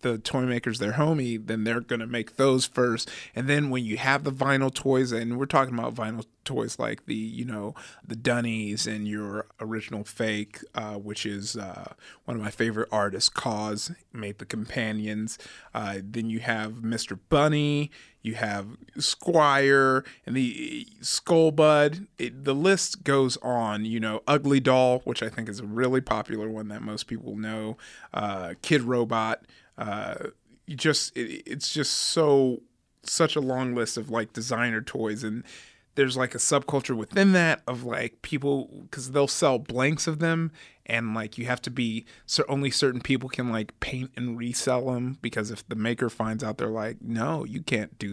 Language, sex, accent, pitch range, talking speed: English, male, American, 110-140 Hz, 180 wpm